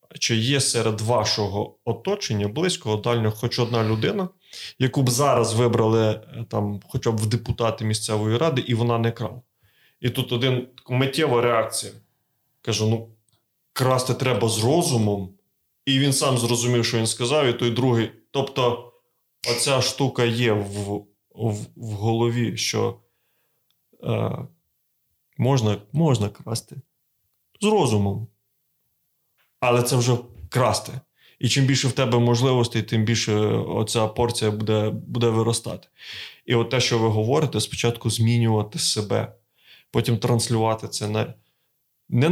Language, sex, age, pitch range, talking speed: Ukrainian, male, 20-39, 110-130 Hz, 130 wpm